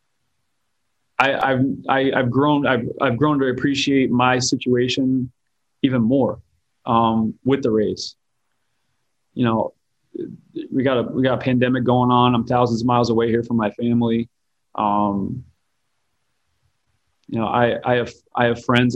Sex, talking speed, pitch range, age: male, 150 wpm, 110-125 Hz, 30-49